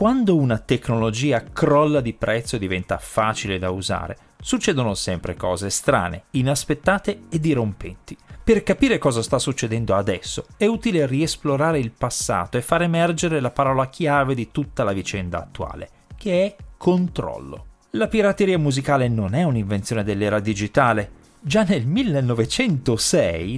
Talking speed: 135 wpm